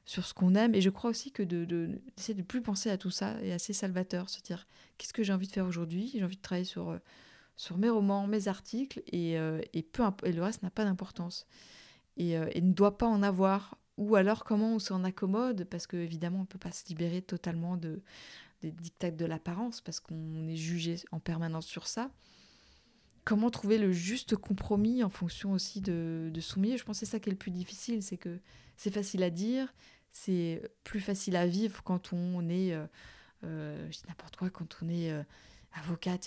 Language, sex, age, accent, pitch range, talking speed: French, female, 20-39, French, 170-205 Hz, 220 wpm